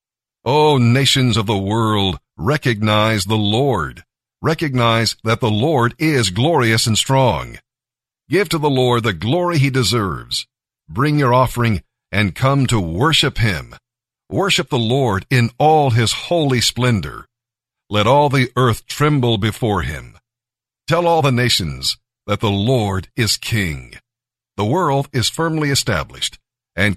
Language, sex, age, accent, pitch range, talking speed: English, male, 50-69, American, 105-135 Hz, 140 wpm